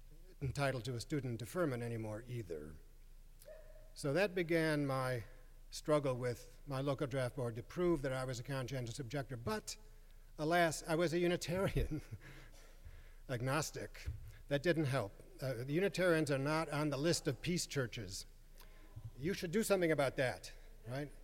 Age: 50-69